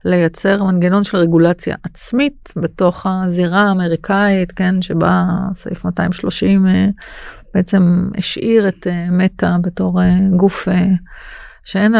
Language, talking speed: Hebrew, 95 wpm